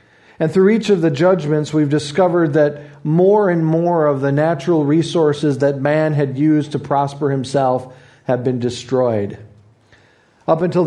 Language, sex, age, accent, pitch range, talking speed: English, male, 40-59, American, 125-160 Hz, 155 wpm